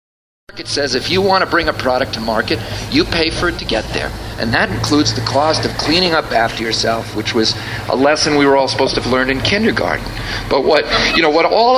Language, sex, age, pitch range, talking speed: English, male, 50-69, 115-150 Hz, 235 wpm